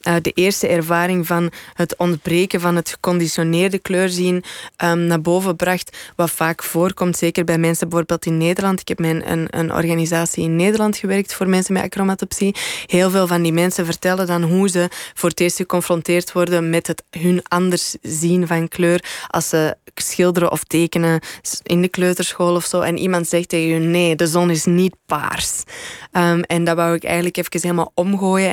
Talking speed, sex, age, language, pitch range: 180 wpm, female, 20-39, Dutch, 170-185 Hz